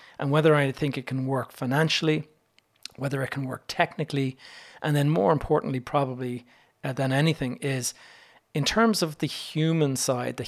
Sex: male